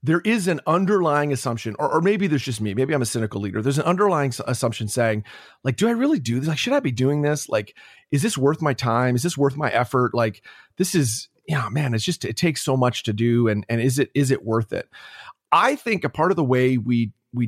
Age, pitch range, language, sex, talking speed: 30-49, 120-160 Hz, English, male, 260 wpm